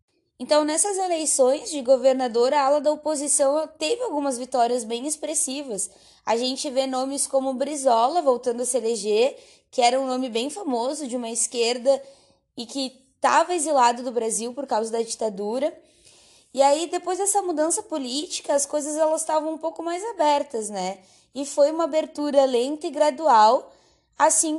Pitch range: 255-310 Hz